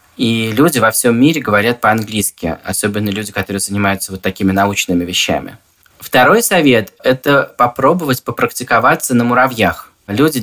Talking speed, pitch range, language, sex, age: 130 wpm, 110-135 Hz, Russian, male, 20-39